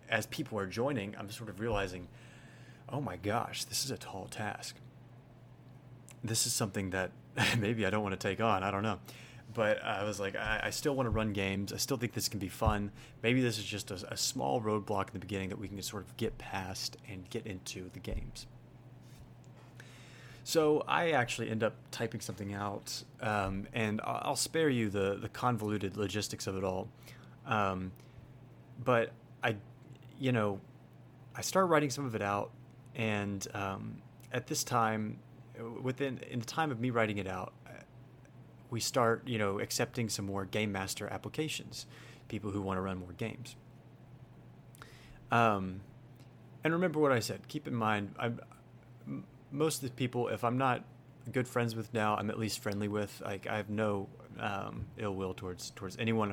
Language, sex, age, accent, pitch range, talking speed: English, male, 30-49, American, 100-125 Hz, 180 wpm